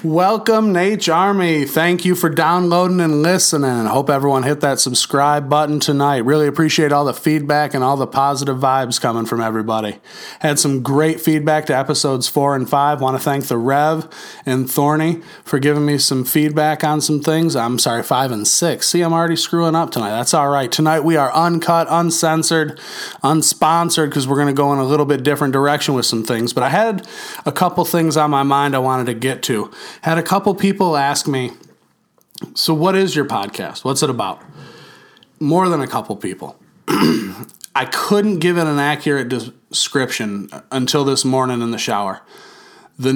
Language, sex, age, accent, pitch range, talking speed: English, male, 30-49, American, 135-165 Hz, 185 wpm